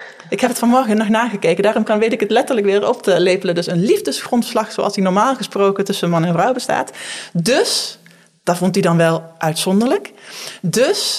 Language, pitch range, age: Dutch, 185-235 Hz, 20-39